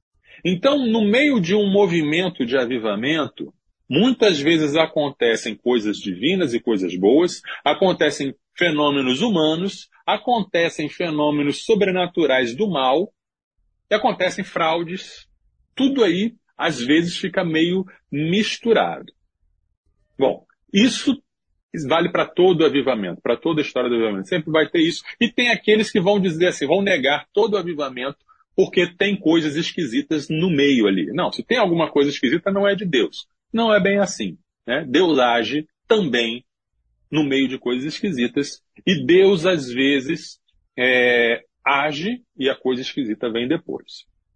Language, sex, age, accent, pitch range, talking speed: Portuguese, male, 40-59, Brazilian, 135-200 Hz, 140 wpm